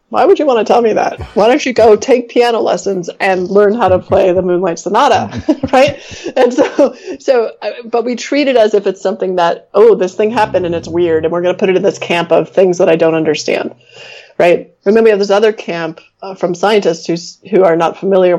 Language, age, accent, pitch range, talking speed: English, 30-49, American, 175-215 Hz, 240 wpm